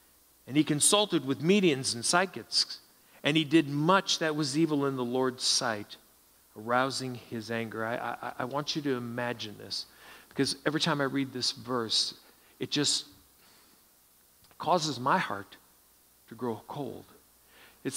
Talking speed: 145 wpm